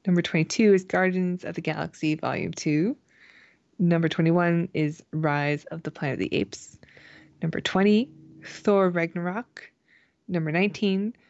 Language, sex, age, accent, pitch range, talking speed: English, female, 20-39, American, 160-195 Hz, 135 wpm